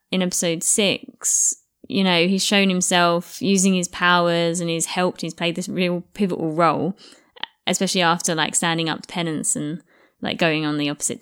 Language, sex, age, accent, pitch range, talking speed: English, female, 20-39, British, 165-210 Hz, 175 wpm